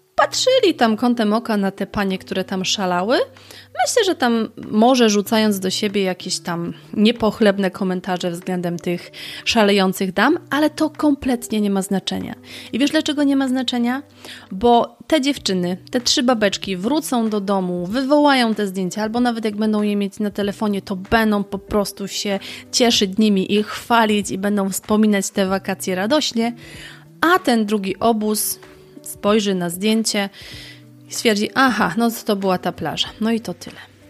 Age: 30-49